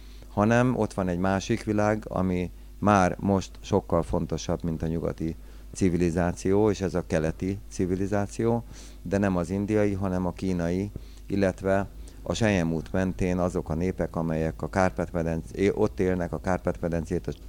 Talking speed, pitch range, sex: 140 wpm, 85-100 Hz, male